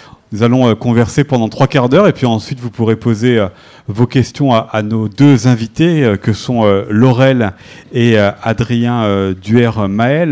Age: 40-59